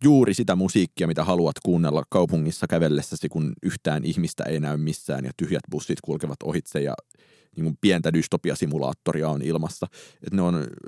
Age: 30-49